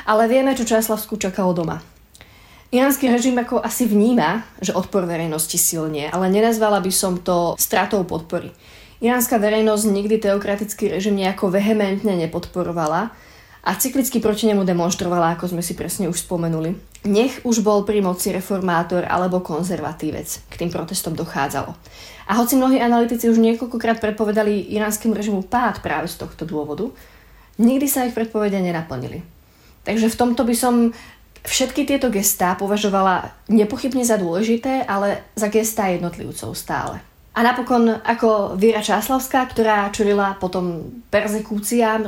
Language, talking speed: Slovak, 140 wpm